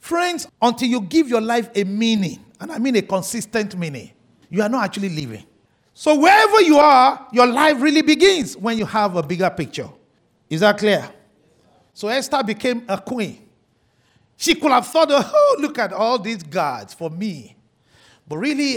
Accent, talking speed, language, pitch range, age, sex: Nigerian, 175 wpm, English, 200-290 Hz, 50-69, male